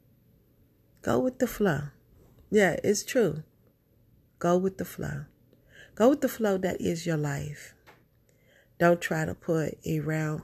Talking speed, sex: 145 wpm, female